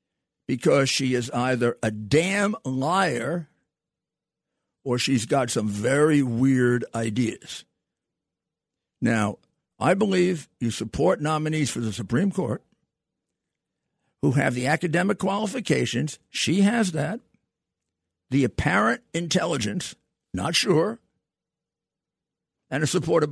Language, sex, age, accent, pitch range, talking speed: English, male, 50-69, American, 115-155 Hz, 105 wpm